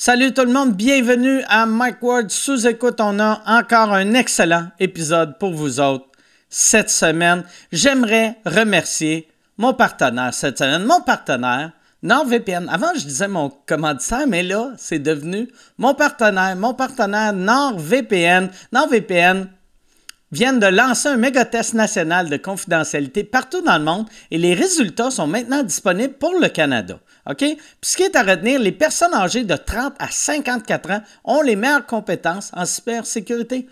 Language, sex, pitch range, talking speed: French, male, 185-255 Hz, 155 wpm